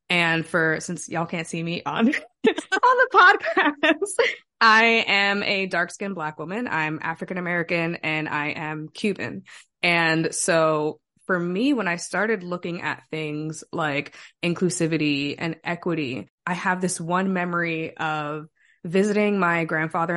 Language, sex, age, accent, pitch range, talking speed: English, female, 20-39, American, 165-205 Hz, 135 wpm